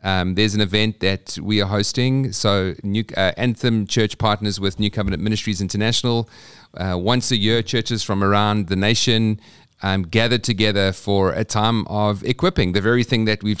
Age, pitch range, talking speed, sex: 40-59, 100-120 Hz, 180 wpm, male